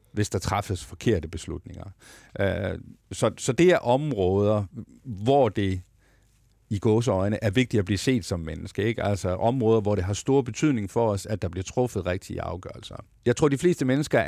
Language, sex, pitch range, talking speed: Danish, male, 100-120 Hz, 180 wpm